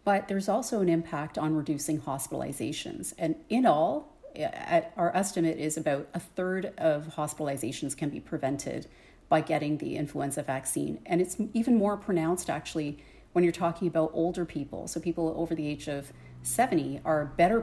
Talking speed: 165 wpm